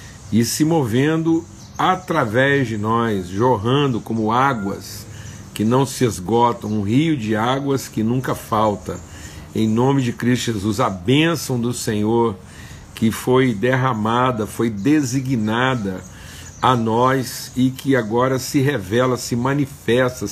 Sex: male